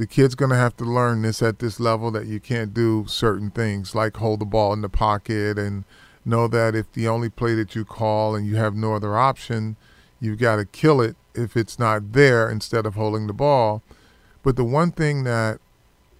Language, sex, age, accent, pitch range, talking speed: English, male, 40-59, American, 110-125 Hz, 220 wpm